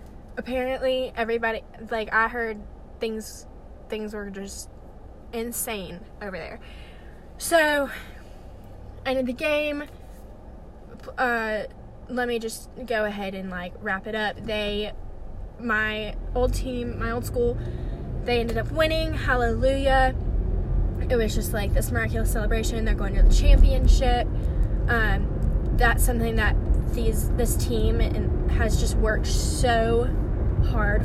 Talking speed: 125 wpm